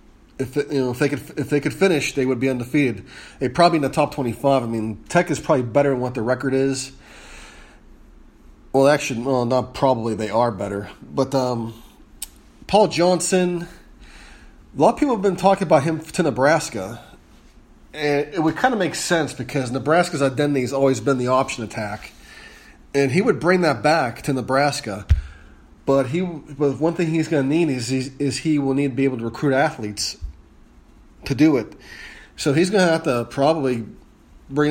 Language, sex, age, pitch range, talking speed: English, male, 30-49, 115-145 Hz, 195 wpm